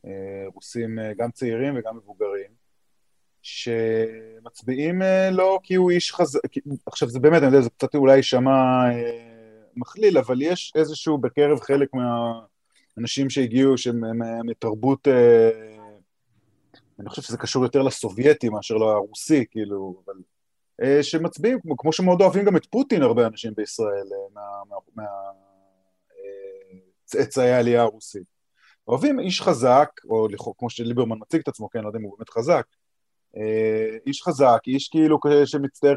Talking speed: 140 wpm